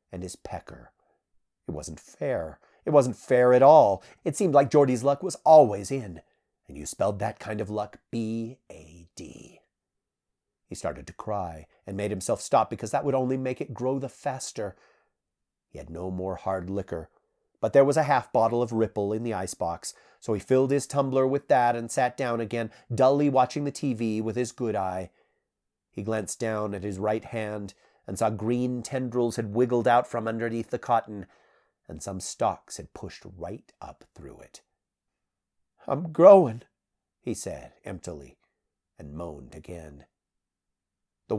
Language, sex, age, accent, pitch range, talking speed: English, male, 40-59, American, 105-130 Hz, 170 wpm